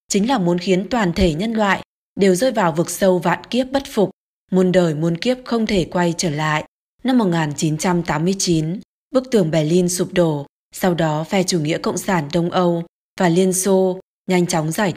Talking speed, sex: 195 wpm, female